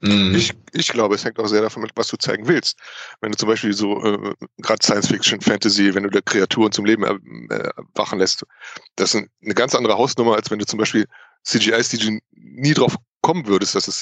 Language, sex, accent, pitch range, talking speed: German, male, German, 105-125 Hz, 215 wpm